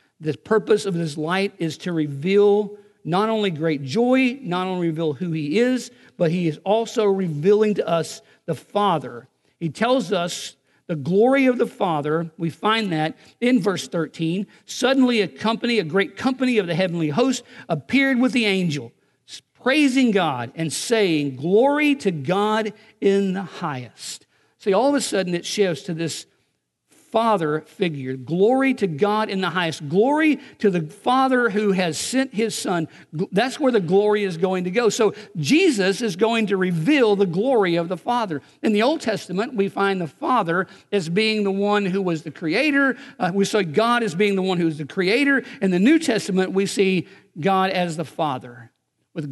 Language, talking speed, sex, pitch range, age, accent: English, 180 wpm, male, 165-220 Hz, 50-69, American